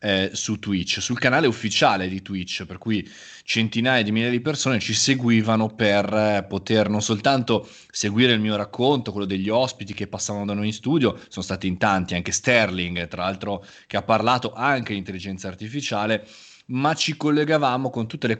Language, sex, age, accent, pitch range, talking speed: Italian, male, 20-39, native, 95-115 Hz, 185 wpm